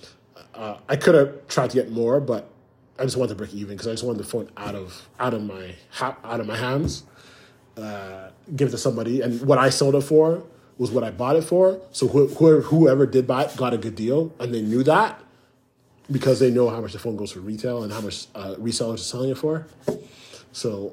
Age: 30-49